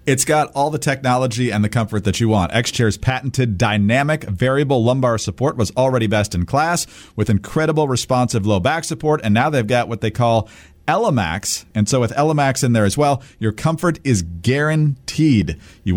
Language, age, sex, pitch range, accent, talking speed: English, 40-59, male, 105-150 Hz, American, 185 wpm